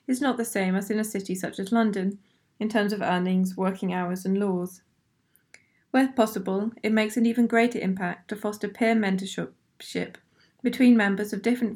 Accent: British